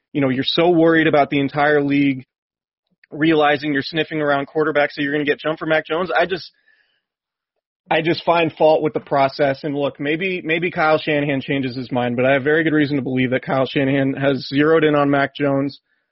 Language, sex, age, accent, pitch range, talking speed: English, male, 30-49, American, 135-160 Hz, 215 wpm